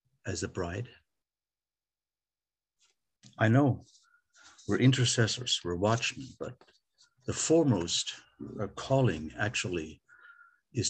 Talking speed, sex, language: 90 wpm, male, English